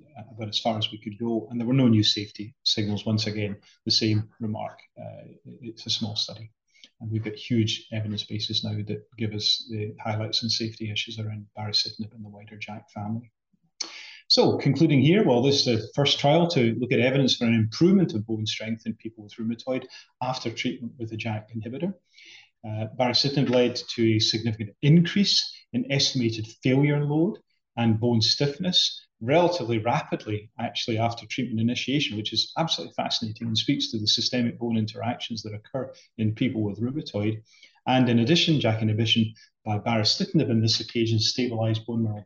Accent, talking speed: British, 180 wpm